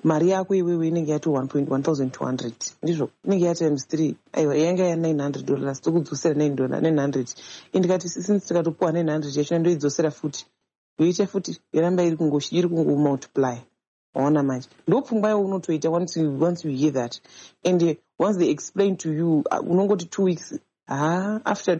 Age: 30-49